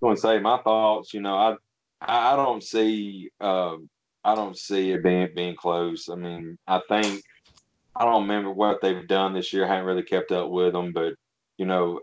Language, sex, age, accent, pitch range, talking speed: English, male, 20-39, American, 90-105 Hz, 210 wpm